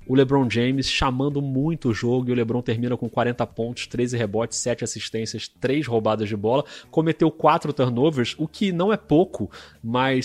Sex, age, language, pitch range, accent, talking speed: male, 30-49, Portuguese, 110-135 Hz, Brazilian, 180 wpm